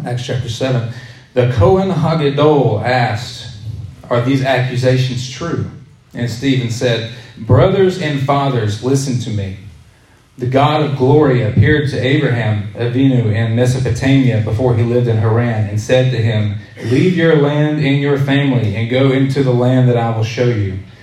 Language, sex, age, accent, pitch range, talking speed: English, male, 40-59, American, 120-140 Hz, 155 wpm